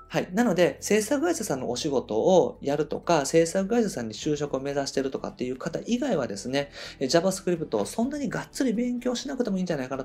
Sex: male